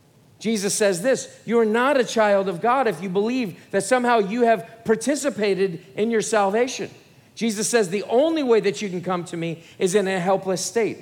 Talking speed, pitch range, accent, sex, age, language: 200 wpm, 175-240 Hz, American, male, 40-59, English